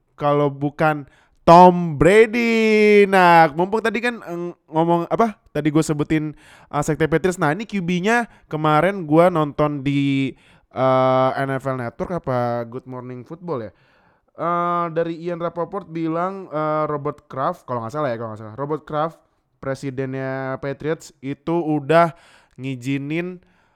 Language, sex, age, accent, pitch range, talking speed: Indonesian, male, 20-39, native, 130-175 Hz, 135 wpm